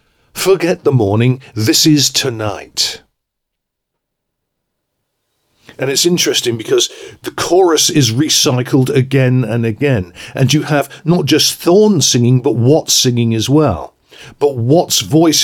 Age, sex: 50-69, male